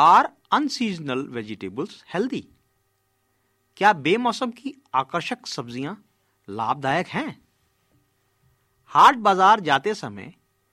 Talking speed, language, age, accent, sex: 80 wpm, Hindi, 50-69, native, male